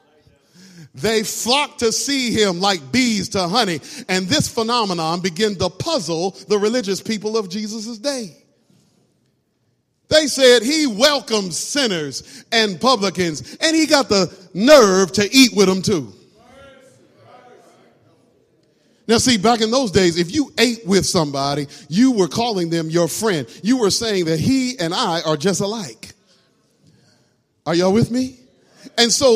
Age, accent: 40-59, American